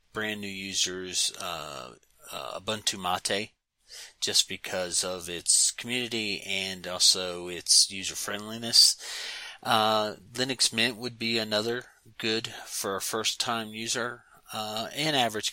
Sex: male